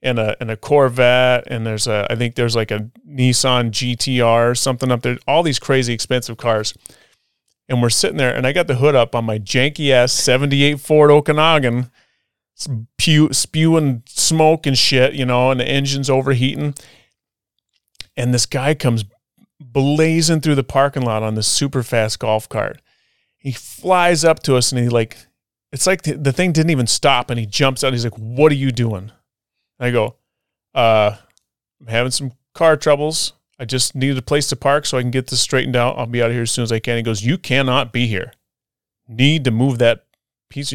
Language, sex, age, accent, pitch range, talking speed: English, male, 30-49, American, 115-140 Hz, 200 wpm